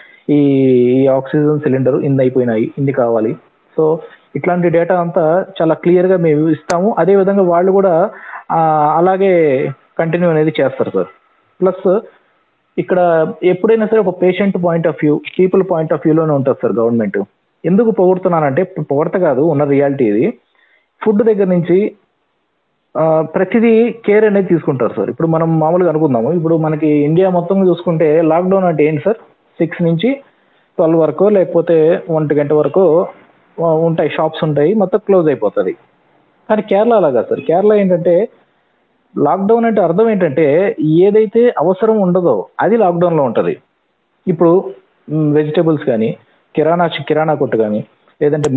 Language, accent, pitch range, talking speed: Telugu, native, 155-190 Hz, 130 wpm